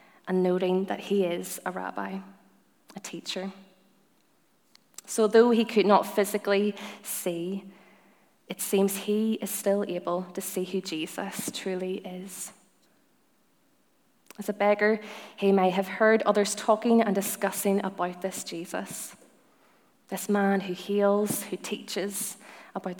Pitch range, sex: 180-205 Hz, female